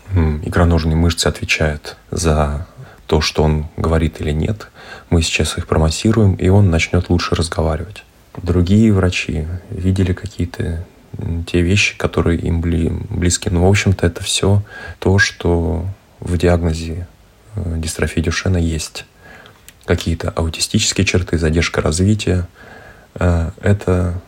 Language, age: Russian, 20-39